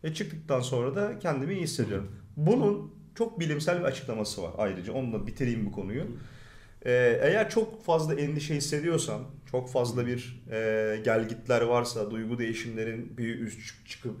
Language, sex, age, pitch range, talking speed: Turkish, male, 30-49, 120-160 Hz, 150 wpm